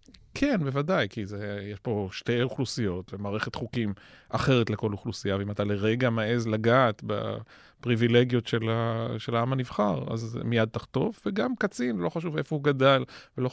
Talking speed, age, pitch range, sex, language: 155 wpm, 30-49, 115-140 Hz, male, Hebrew